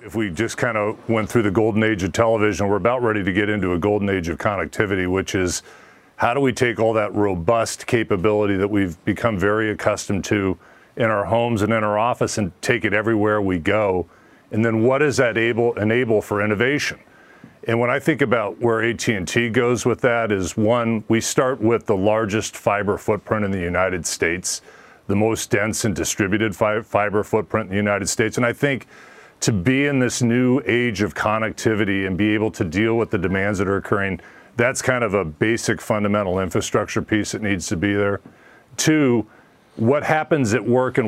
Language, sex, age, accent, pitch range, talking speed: English, male, 40-59, American, 100-120 Hz, 200 wpm